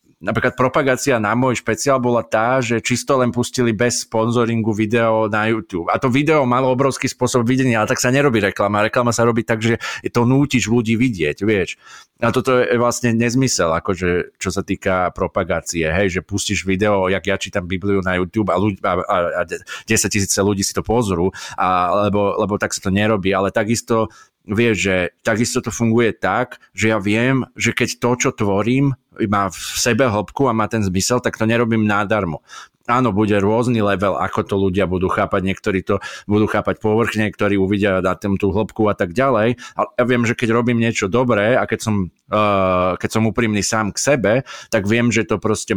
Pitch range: 100-120 Hz